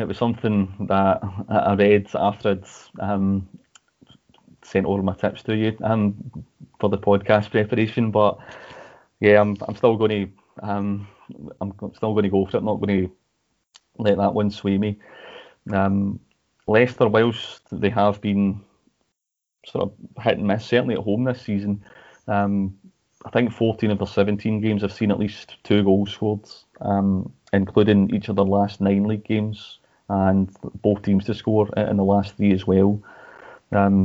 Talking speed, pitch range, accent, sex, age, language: 165 wpm, 100-110 Hz, British, male, 30-49, English